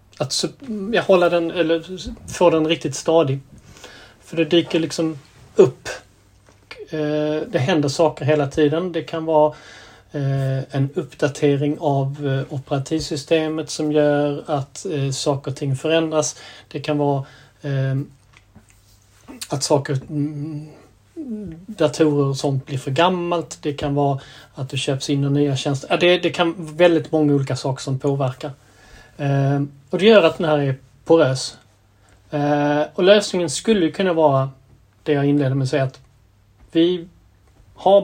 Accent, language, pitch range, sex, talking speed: native, Swedish, 135-155 Hz, male, 135 wpm